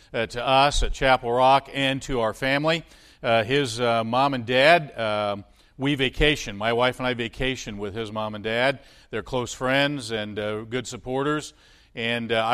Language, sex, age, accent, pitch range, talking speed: English, male, 50-69, American, 115-130 Hz, 180 wpm